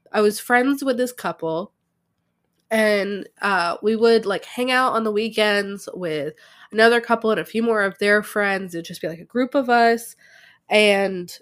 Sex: female